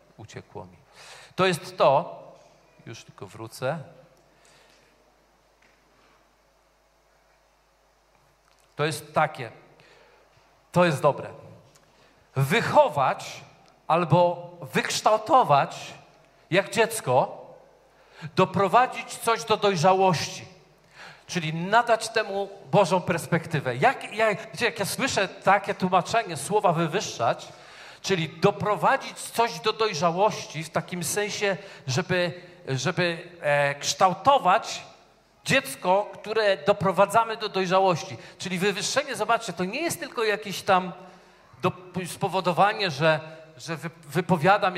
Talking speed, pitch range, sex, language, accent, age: 85 wpm, 160-205 Hz, male, Polish, native, 40-59